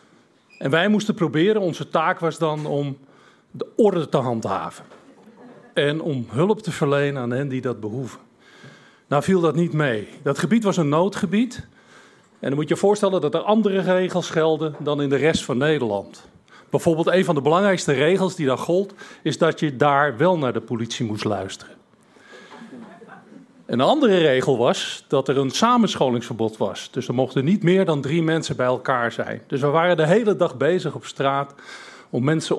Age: 40-59